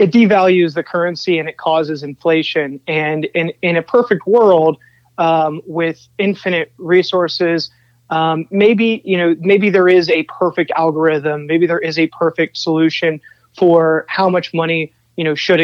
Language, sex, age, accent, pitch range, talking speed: English, male, 20-39, American, 160-185 Hz, 155 wpm